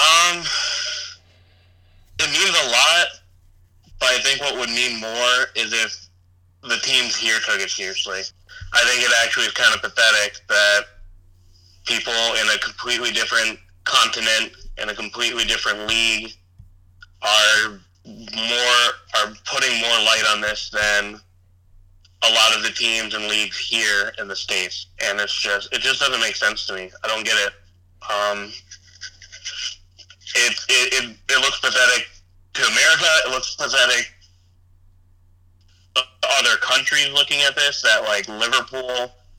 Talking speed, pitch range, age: 145 wpm, 90-115 Hz, 30-49